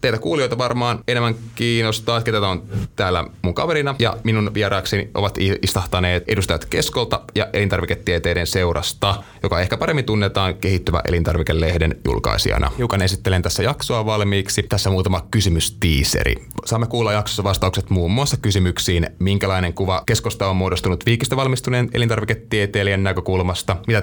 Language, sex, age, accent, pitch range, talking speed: Finnish, male, 20-39, native, 90-110 Hz, 125 wpm